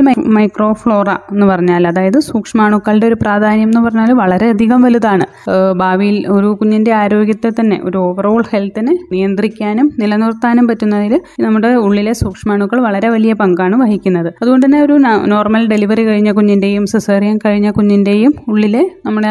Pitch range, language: 190-225 Hz, Malayalam